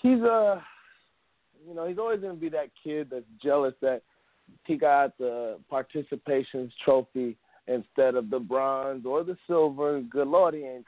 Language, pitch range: English, 125-155 Hz